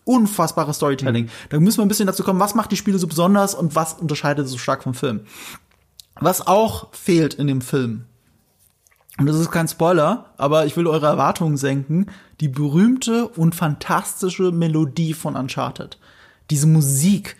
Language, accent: German, German